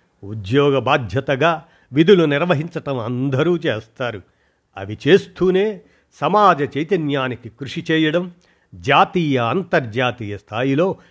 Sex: male